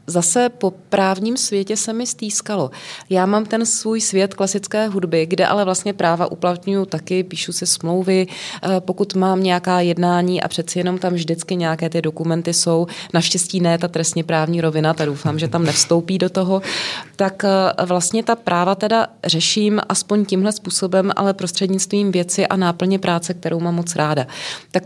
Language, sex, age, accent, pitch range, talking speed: Czech, female, 20-39, native, 170-195 Hz, 165 wpm